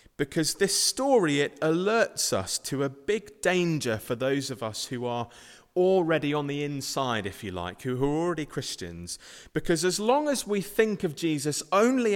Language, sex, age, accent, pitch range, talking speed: English, male, 30-49, British, 120-185 Hz, 180 wpm